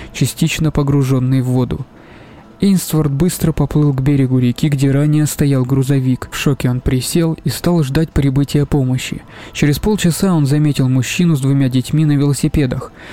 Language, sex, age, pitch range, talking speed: Russian, male, 20-39, 135-155 Hz, 150 wpm